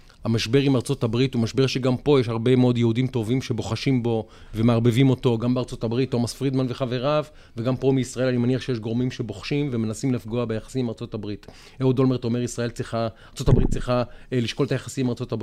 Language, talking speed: Hebrew, 130 wpm